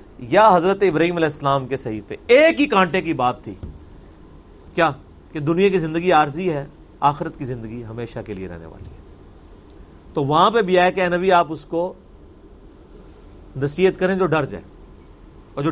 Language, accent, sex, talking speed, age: English, Indian, male, 180 wpm, 40-59